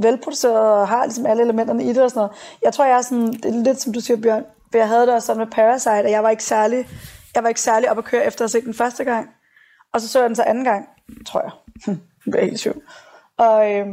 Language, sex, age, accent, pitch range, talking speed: Danish, female, 20-39, native, 215-240 Hz, 270 wpm